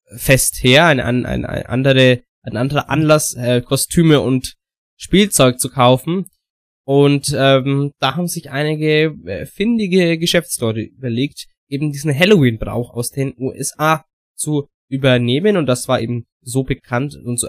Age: 20-39